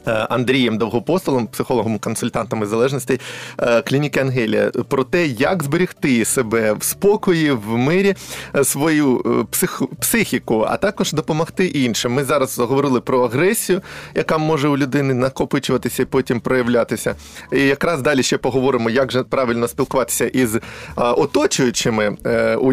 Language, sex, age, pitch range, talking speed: Ukrainian, male, 20-39, 115-155 Hz, 125 wpm